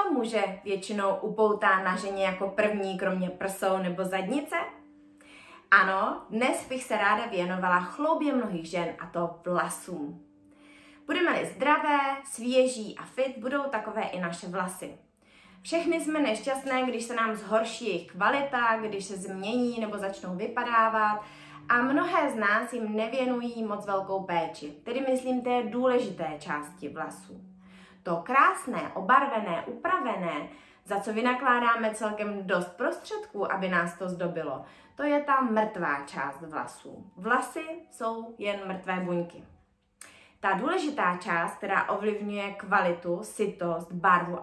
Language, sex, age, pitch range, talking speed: Czech, female, 20-39, 180-260 Hz, 130 wpm